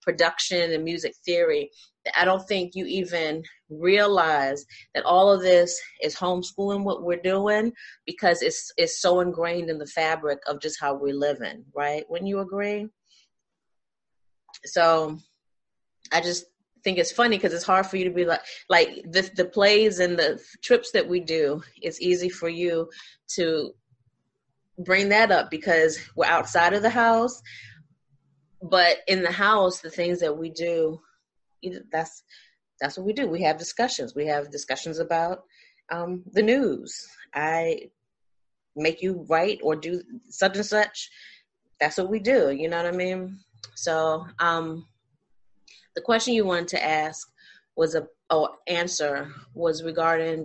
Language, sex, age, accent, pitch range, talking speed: English, female, 30-49, American, 155-190 Hz, 155 wpm